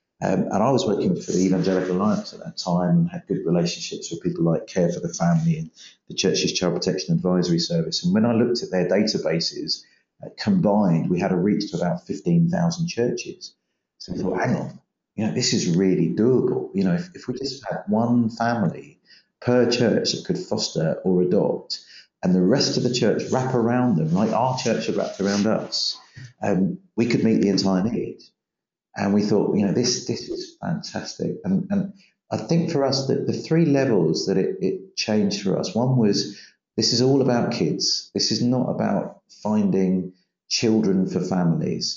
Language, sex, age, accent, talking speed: English, male, 40-59, British, 195 wpm